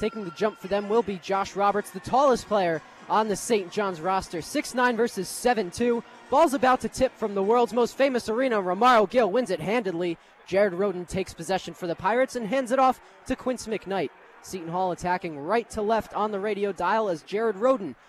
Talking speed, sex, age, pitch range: 205 wpm, male, 20-39, 185-235 Hz